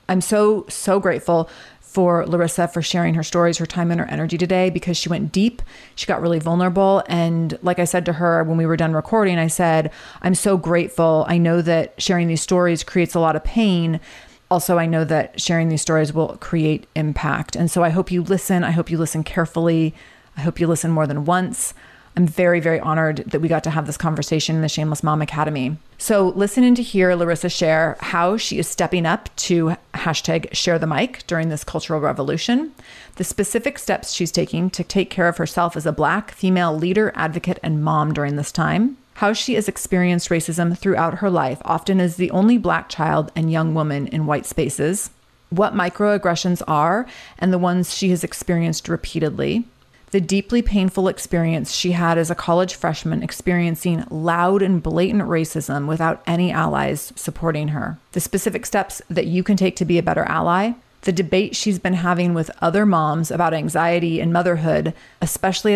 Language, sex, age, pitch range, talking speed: English, female, 30-49, 160-185 Hz, 195 wpm